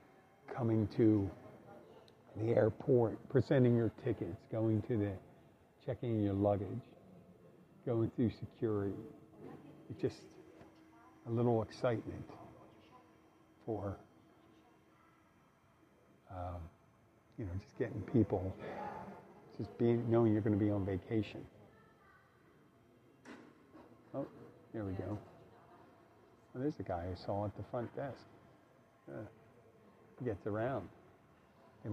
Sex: male